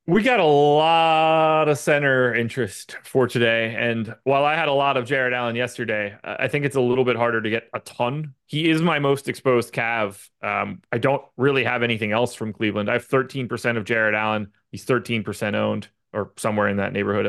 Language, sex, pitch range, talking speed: English, male, 105-135 Hz, 205 wpm